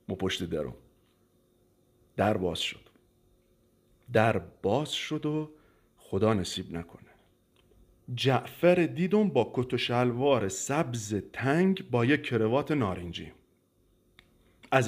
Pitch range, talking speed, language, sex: 100-150 Hz, 95 wpm, Persian, male